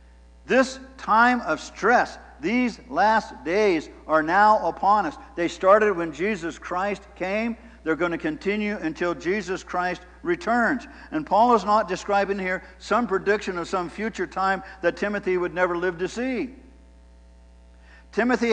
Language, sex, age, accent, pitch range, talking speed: English, male, 50-69, American, 175-230 Hz, 145 wpm